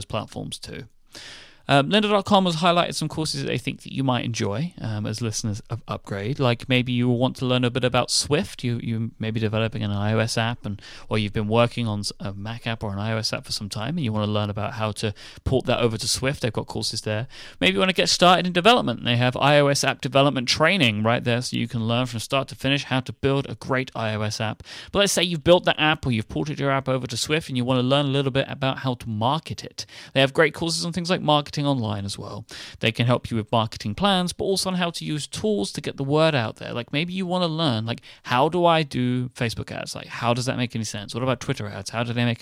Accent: British